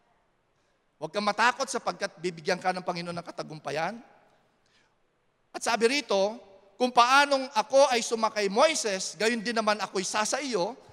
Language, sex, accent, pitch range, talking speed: English, male, Filipino, 190-245 Hz, 135 wpm